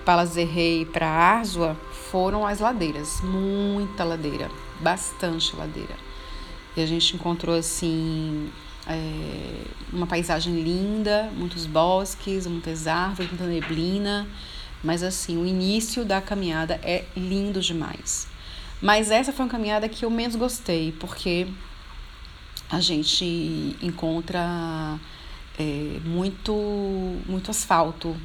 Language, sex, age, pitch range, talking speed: Portuguese, female, 30-49, 160-195 Hz, 110 wpm